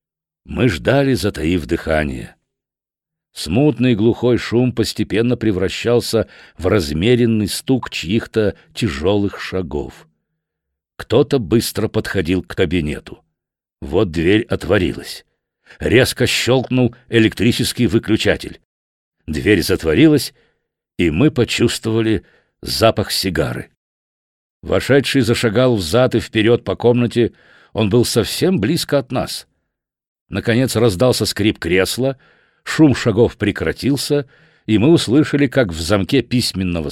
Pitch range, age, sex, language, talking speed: 95-125 Hz, 60-79, male, Russian, 100 wpm